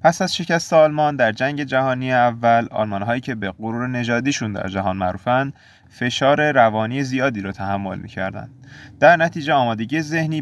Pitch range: 110-145 Hz